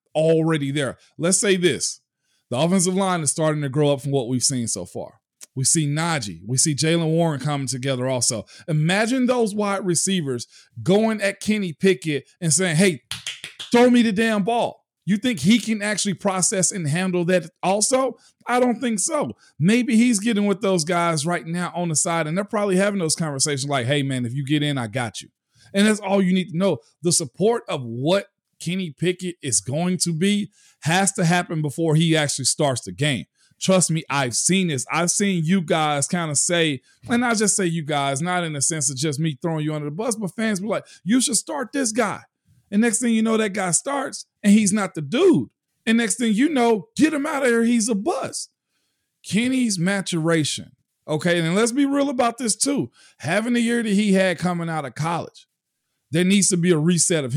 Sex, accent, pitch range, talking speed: male, American, 155-210 Hz, 215 wpm